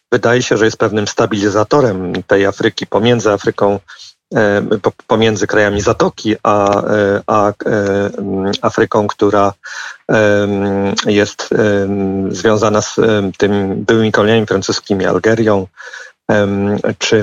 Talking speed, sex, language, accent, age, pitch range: 85 wpm, male, Polish, native, 50-69, 100-115 Hz